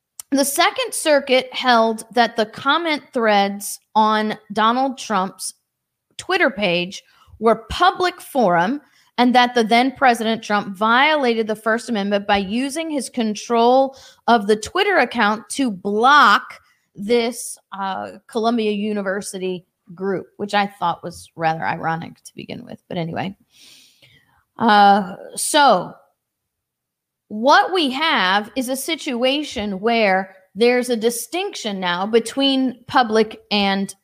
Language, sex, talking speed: English, female, 120 wpm